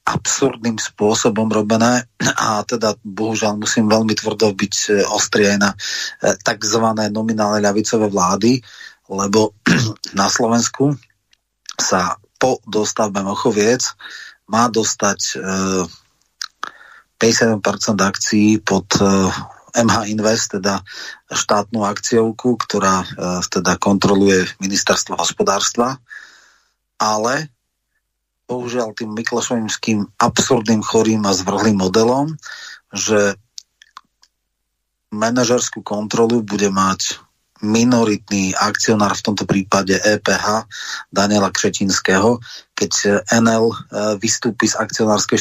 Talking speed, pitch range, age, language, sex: 85 wpm, 100-115 Hz, 30-49, Slovak, male